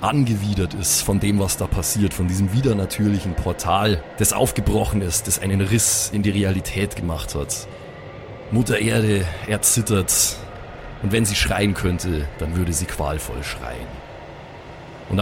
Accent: German